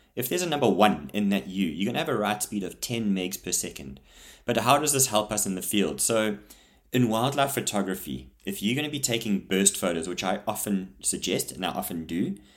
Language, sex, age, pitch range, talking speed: English, male, 30-49, 85-110 Hz, 235 wpm